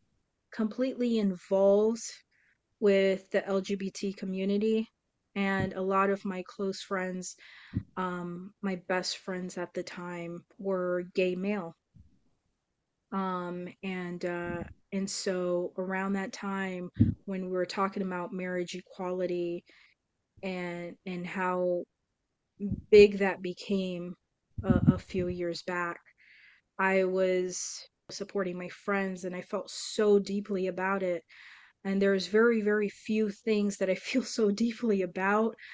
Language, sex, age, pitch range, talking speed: English, female, 20-39, 180-200 Hz, 130 wpm